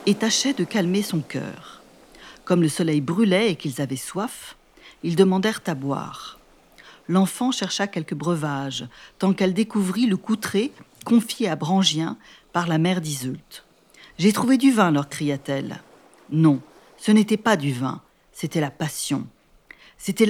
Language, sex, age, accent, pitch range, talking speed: French, female, 50-69, French, 155-200 Hz, 155 wpm